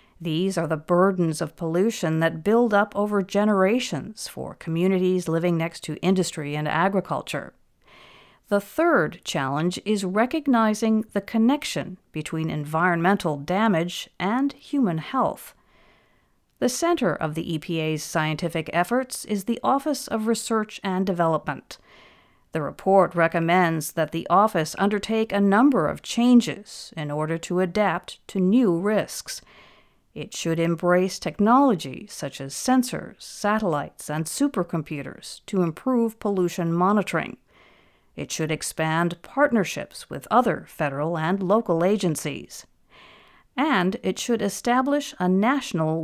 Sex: female